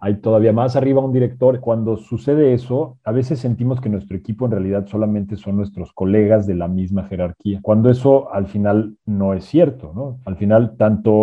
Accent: Mexican